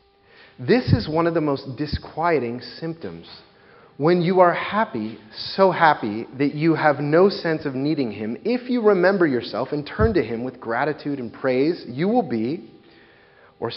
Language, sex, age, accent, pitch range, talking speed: English, male, 30-49, American, 110-170 Hz, 165 wpm